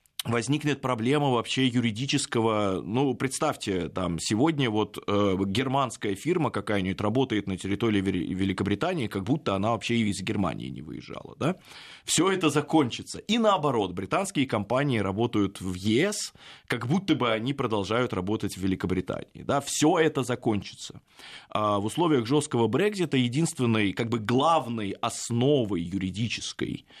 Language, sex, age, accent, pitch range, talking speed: Russian, male, 20-39, native, 100-140 Hz, 135 wpm